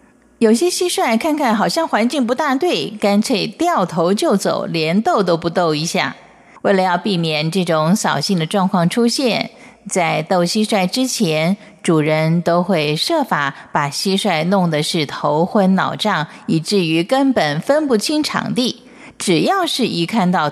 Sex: female